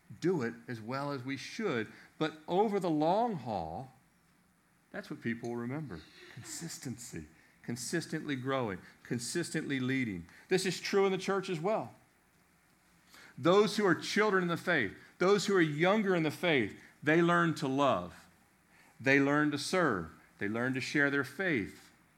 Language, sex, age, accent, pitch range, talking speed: English, male, 50-69, American, 130-180 Hz, 155 wpm